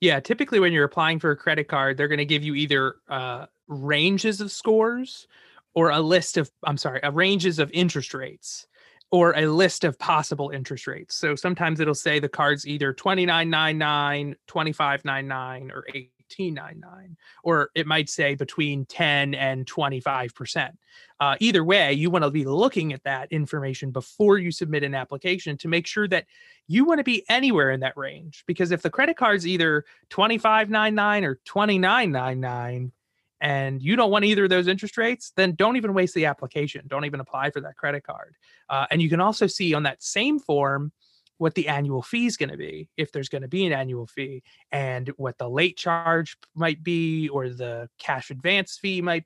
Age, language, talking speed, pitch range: 30-49, English, 190 wpm, 140-185 Hz